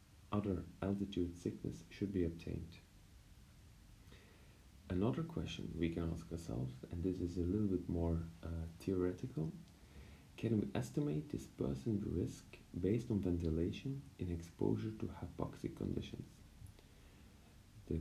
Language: English